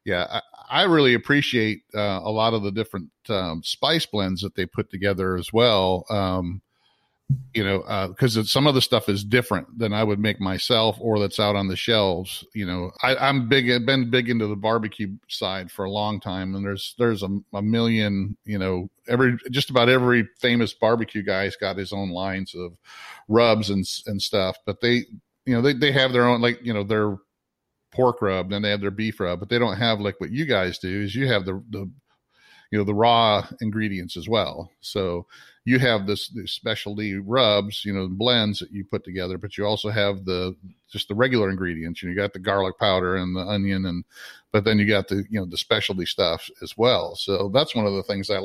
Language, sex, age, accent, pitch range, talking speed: English, male, 40-59, American, 95-115 Hz, 220 wpm